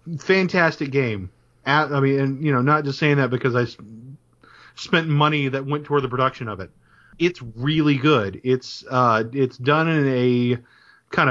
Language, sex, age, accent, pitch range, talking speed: English, male, 30-49, American, 120-150 Hz, 180 wpm